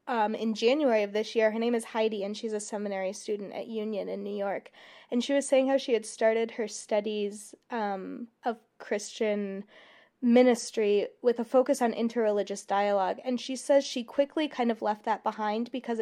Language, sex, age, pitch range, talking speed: English, female, 20-39, 205-235 Hz, 190 wpm